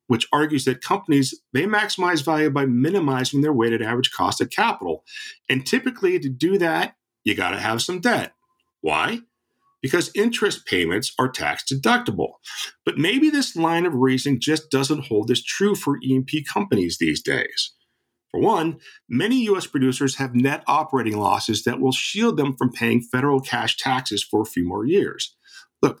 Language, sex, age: English, male, 50-69